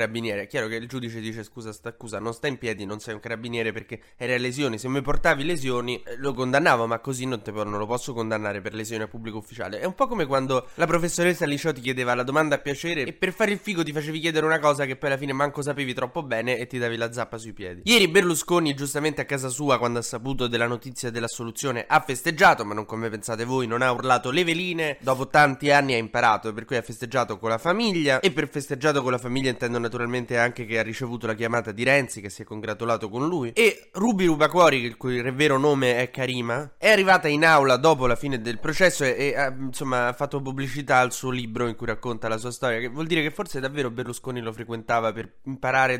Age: 20-39